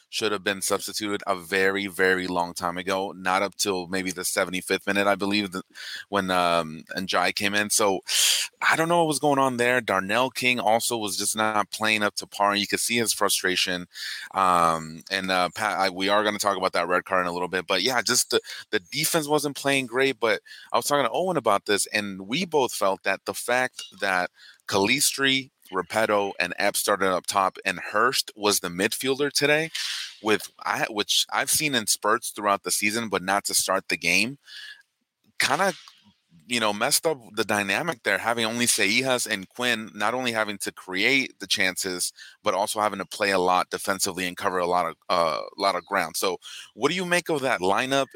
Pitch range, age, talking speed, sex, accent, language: 95-125 Hz, 30-49, 210 wpm, male, American, English